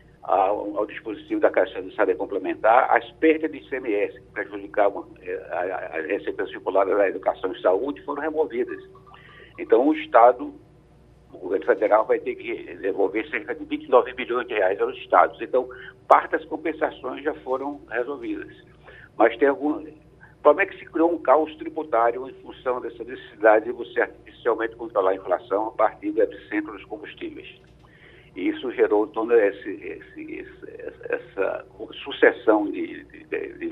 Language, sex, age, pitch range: Portuguese, male, 60-79, 305-435 Hz